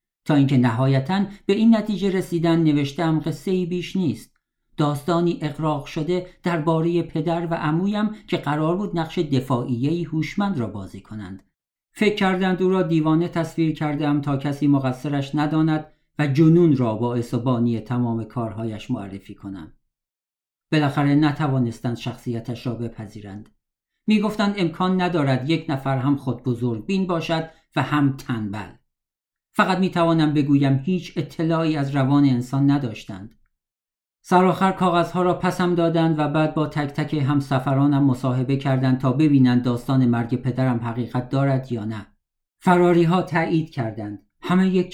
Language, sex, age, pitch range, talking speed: Persian, male, 50-69, 125-165 Hz, 140 wpm